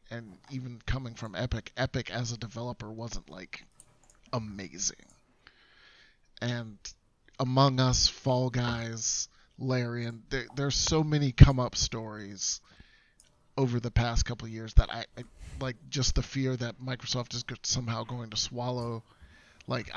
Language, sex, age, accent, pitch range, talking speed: English, male, 30-49, American, 115-130 Hz, 130 wpm